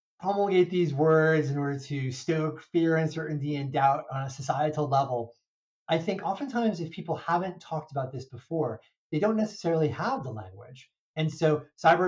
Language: English